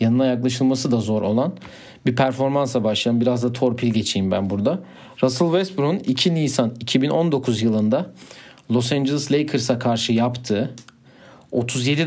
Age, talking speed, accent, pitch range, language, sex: 40-59, 130 wpm, native, 115-135 Hz, Turkish, male